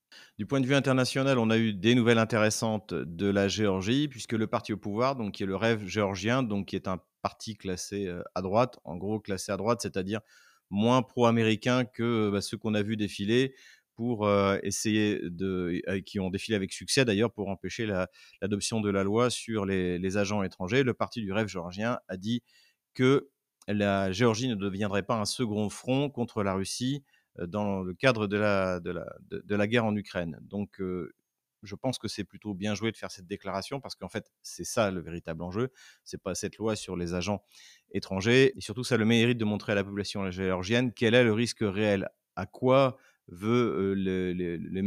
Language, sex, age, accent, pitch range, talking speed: French, male, 30-49, French, 95-115 Hz, 205 wpm